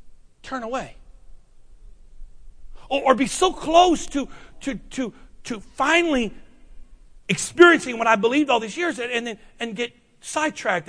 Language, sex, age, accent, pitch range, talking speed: English, male, 40-59, American, 230-335 Hz, 140 wpm